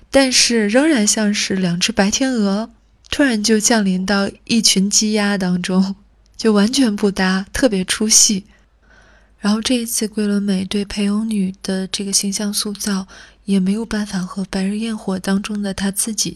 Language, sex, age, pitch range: Chinese, female, 20-39, 190-225 Hz